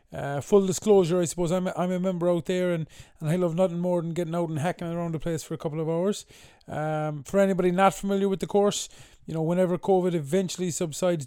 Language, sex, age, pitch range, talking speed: English, male, 30-49, 155-185 Hz, 240 wpm